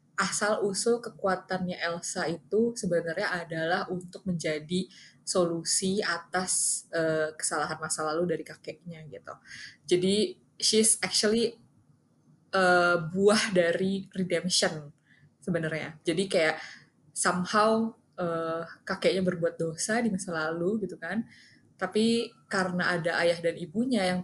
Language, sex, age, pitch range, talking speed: Indonesian, female, 20-39, 165-215 Hz, 110 wpm